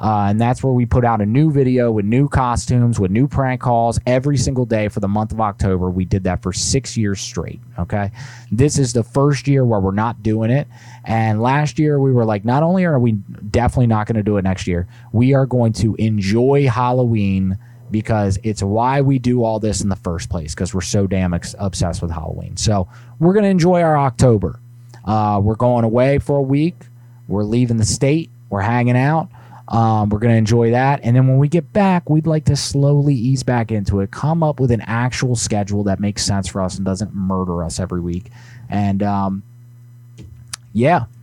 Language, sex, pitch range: English, male, 105-130 Hz